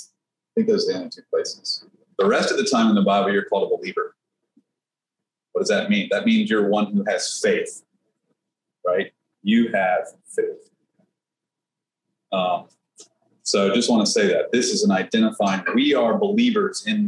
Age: 30-49